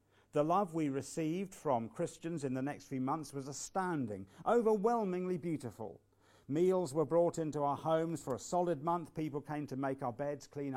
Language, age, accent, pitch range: English, 50-69, British, 105-155 Hz